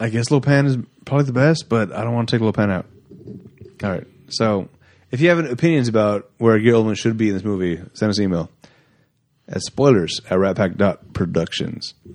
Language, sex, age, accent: English, male, 30-49, American